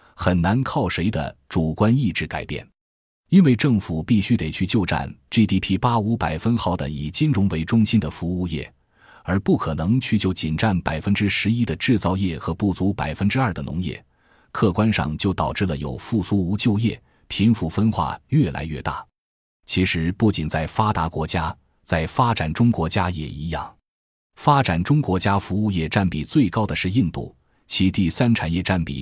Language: Chinese